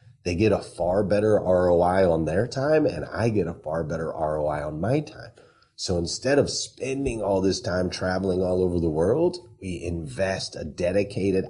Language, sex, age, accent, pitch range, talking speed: English, male, 30-49, American, 85-100 Hz, 185 wpm